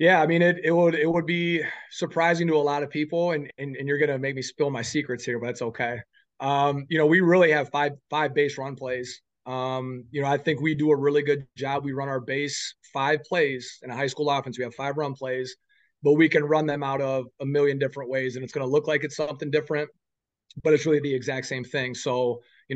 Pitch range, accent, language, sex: 130-150 Hz, American, English, male